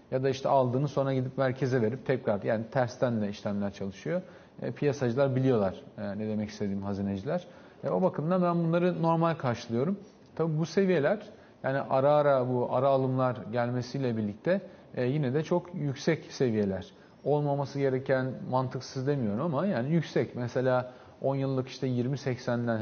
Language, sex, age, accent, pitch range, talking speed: Turkish, male, 40-59, native, 120-160 Hz, 155 wpm